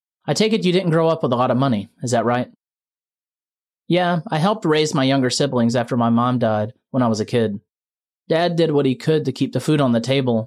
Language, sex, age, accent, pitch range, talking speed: English, male, 30-49, American, 115-145 Hz, 245 wpm